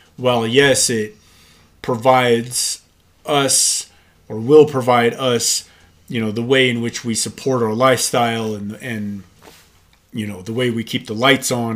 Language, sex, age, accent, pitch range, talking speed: English, male, 30-49, American, 105-125 Hz, 155 wpm